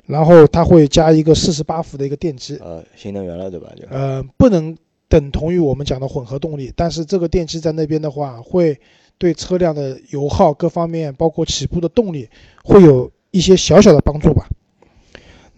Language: Chinese